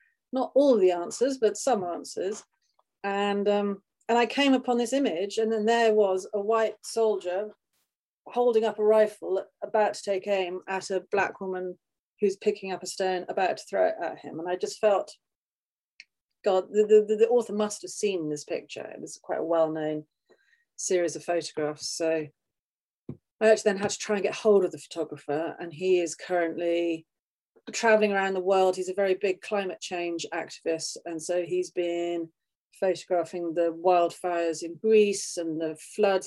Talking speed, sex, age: 180 wpm, female, 40-59